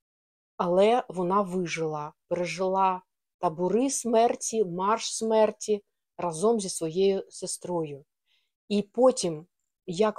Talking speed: 90 wpm